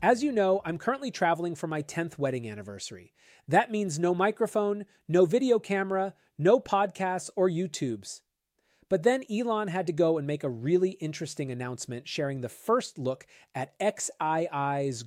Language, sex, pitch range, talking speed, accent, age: English, male, 125-180 Hz, 160 wpm, American, 30-49